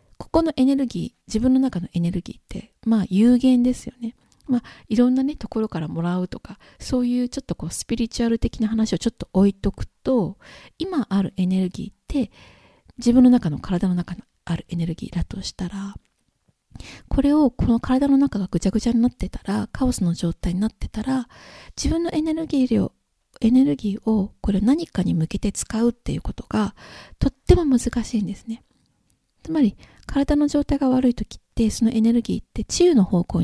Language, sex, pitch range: Japanese, female, 185-255 Hz